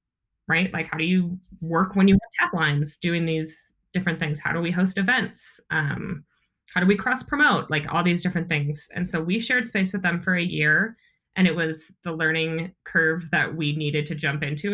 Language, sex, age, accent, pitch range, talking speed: English, female, 20-39, American, 155-190 Hz, 215 wpm